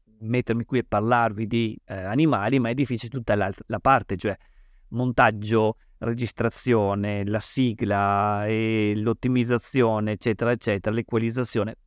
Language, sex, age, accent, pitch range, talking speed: Italian, male, 40-59, native, 105-135 Hz, 120 wpm